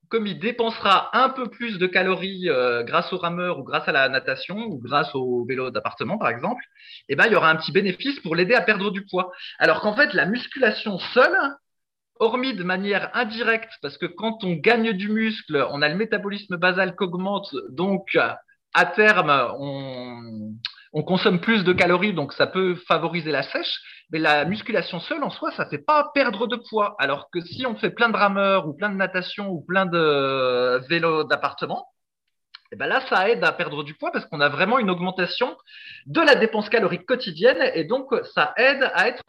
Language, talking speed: French, 200 wpm